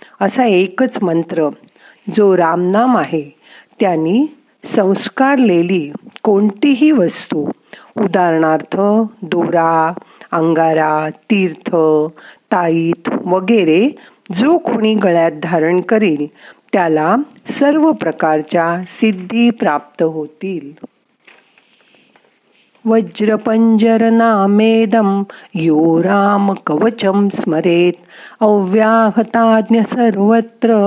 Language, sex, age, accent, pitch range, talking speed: Marathi, female, 50-69, native, 170-230 Hz, 60 wpm